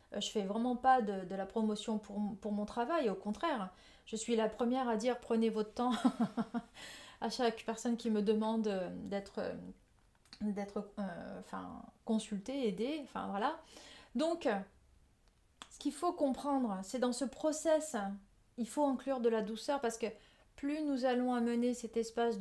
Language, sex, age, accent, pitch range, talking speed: French, female, 30-49, French, 220-265 Hz, 165 wpm